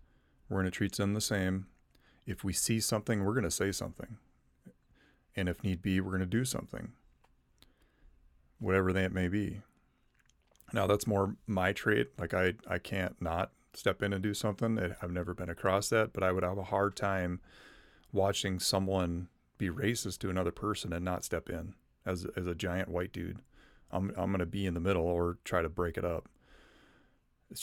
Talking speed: 190 wpm